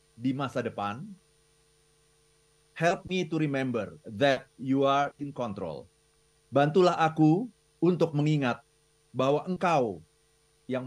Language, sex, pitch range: Indonesian, male, 135-155 Hz